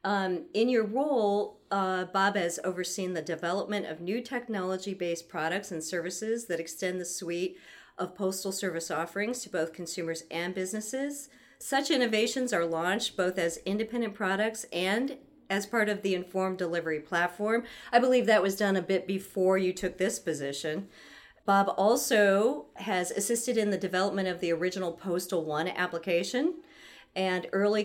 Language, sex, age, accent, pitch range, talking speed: English, female, 40-59, American, 180-230 Hz, 155 wpm